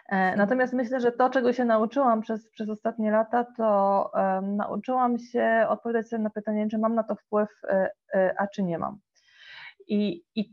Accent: native